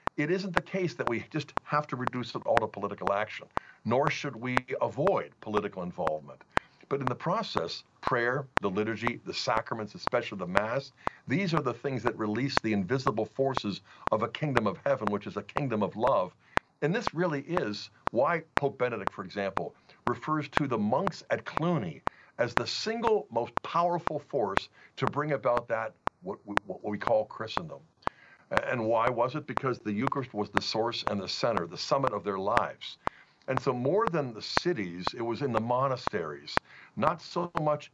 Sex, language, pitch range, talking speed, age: male, English, 110-150 Hz, 180 wpm, 60-79